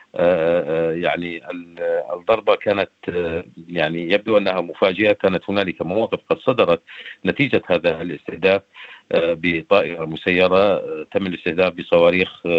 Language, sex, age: Arabic, male, 50-69